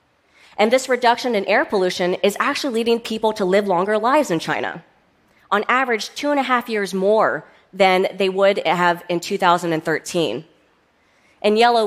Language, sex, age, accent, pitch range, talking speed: Portuguese, female, 30-49, American, 175-225 Hz, 160 wpm